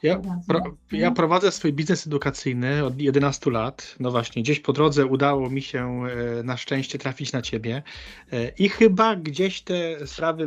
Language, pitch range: Polish, 120-150 Hz